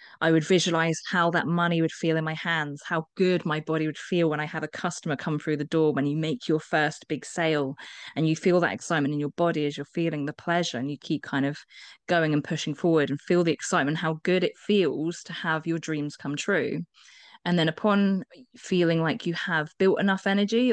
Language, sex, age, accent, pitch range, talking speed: English, female, 20-39, British, 155-185 Hz, 230 wpm